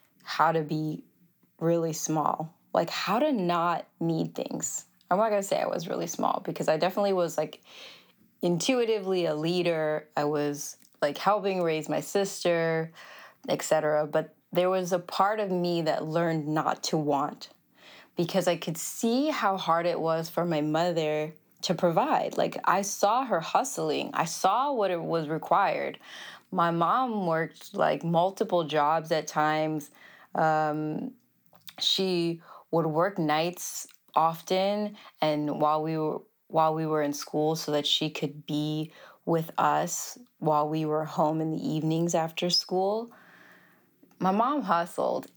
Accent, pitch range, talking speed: American, 155-185 Hz, 150 wpm